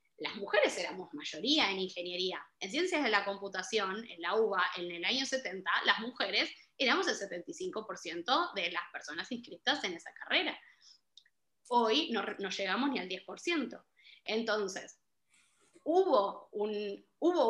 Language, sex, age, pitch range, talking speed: Spanish, female, 20-39, 200-255 Hz, 140 wpm